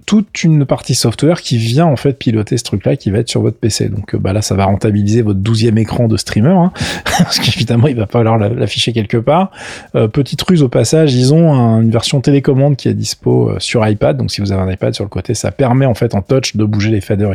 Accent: French